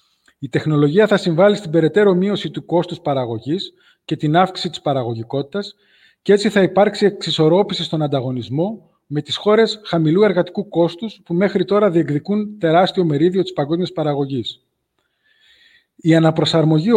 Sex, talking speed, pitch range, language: male, 140 wpm, 145-190 Hz, Greek